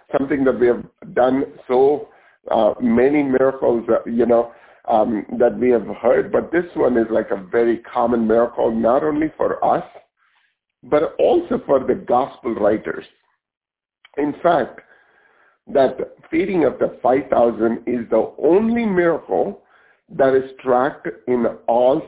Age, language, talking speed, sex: 50-69, English, 140 wpm, male